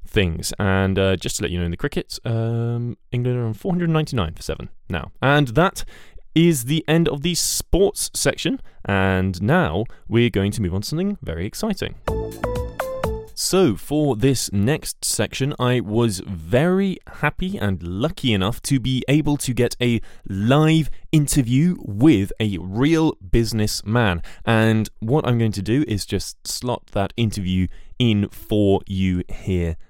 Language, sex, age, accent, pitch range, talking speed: English, male, 20-39, British, 95-125 Hz, 155 wpm